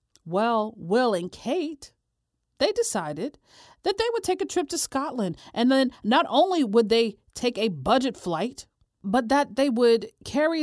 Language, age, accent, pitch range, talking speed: English, 40-59, American, 180-260 Hz, 165 wpm